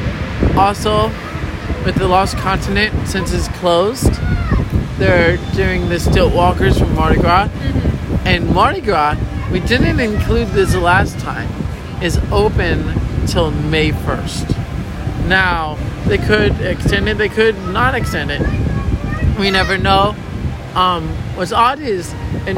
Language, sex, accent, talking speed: English, male, American, 130 wpm